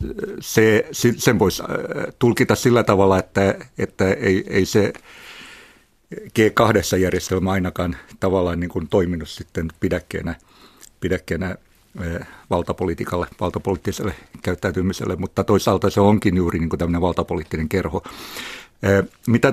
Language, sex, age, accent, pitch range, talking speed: Finnish, male, 60-79, native, 95-110 Hz, 105 wpm